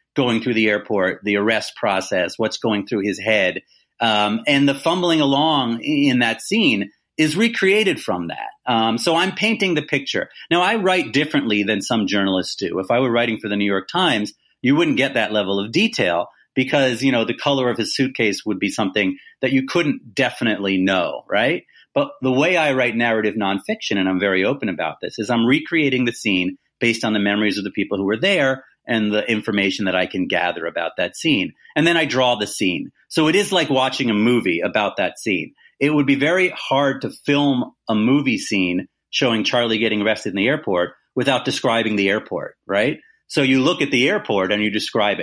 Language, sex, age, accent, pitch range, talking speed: English, male, 30-49, American, 105-155 Hz, 205 wpm